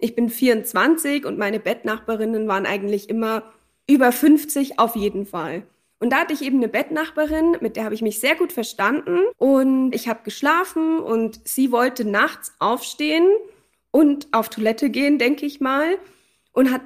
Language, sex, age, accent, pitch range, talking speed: German, female, 20-39, German, 230-300 Hz, 165 wpm